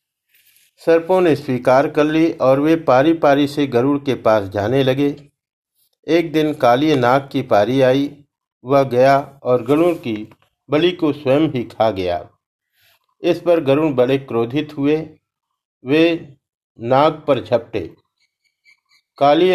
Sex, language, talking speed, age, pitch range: male, Hindi, 135 wpm, 50-69, 125-155 Hz